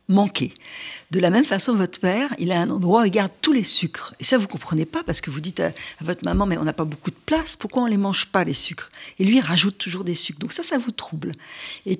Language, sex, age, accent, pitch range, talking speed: French, female, 50-69, French, 170-230 Hz, 305 wpm